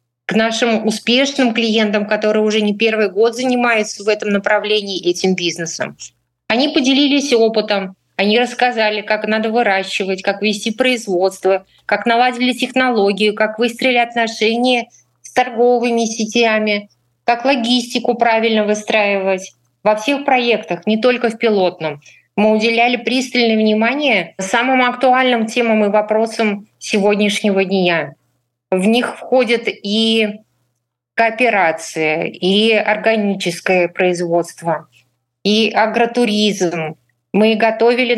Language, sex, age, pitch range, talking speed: Russian, female, 20-39, 195-235 Hz, 110 wpm